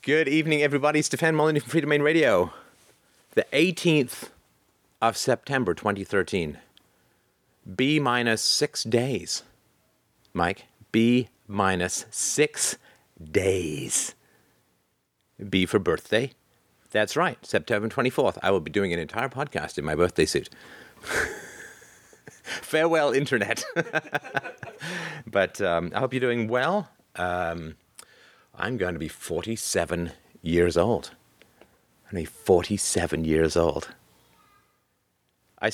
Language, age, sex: English, 40-59, male